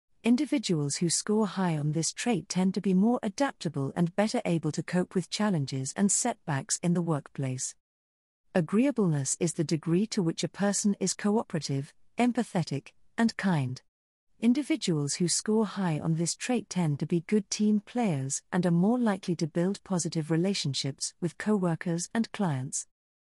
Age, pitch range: 40-59, 160-210 Hz